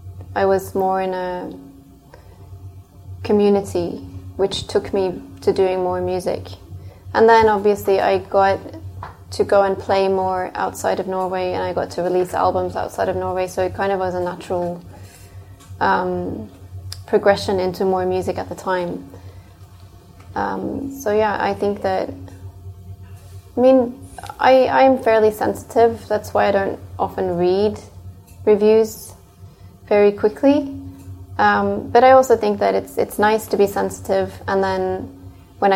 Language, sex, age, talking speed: English, female, 20-39, 145 wpm